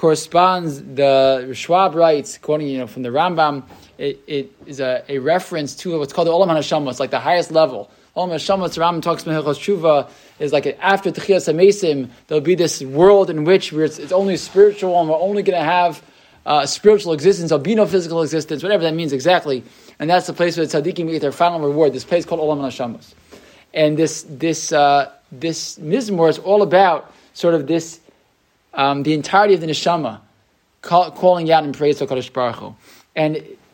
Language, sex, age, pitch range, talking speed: English, male, 20-39, 145-180 Hz, 190 wpm